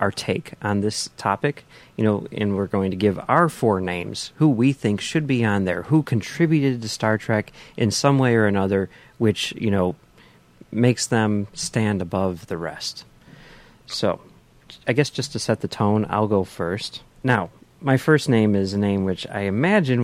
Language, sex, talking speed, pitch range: English, male, 185 wpm, 95-125 Hz